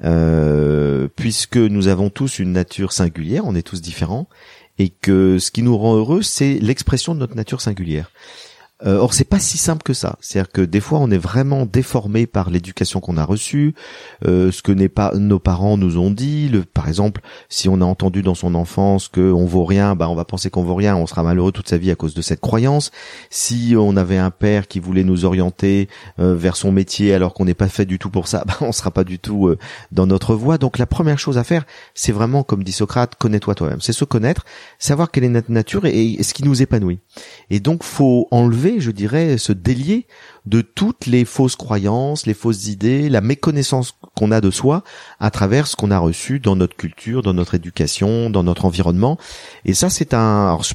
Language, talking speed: French, 225 wpm